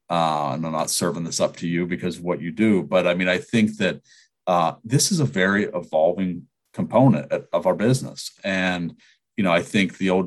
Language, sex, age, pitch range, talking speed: English, male, 40-59, 85-110 Hz, 215 wpm